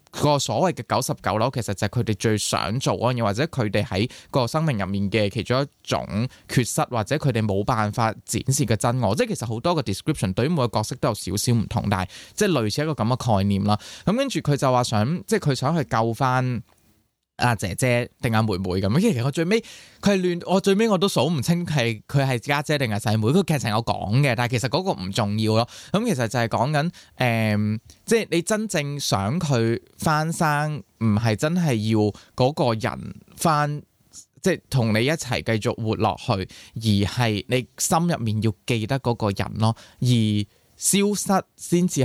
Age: 20-39